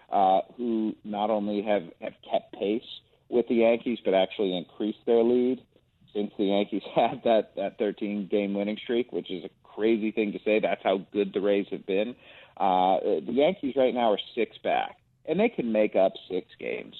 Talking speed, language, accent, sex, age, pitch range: 190 wpm, English, American, male, 40-59, 100-125 Hz